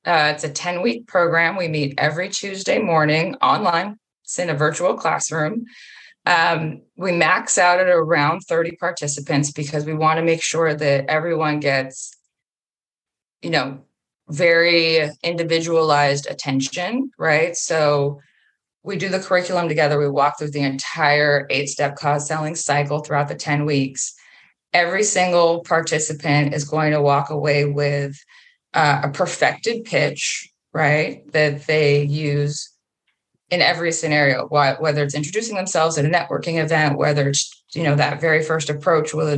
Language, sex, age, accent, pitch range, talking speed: English, female, 20-39, American, 145-170 Hz, 145 wpm